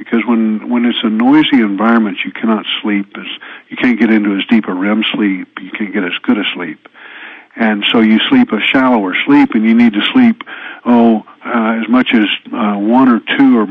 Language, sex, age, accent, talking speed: English, male, 50-69, American, 210 wpm